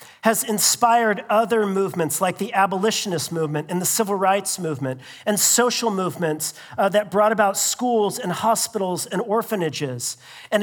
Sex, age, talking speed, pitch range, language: male, 40-59, 145 wpm, 190-235 Hz, English